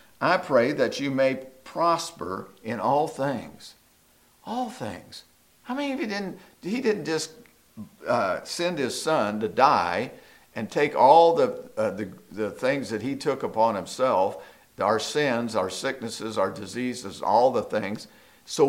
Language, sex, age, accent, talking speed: English, male, 50-69, American, 150 wpm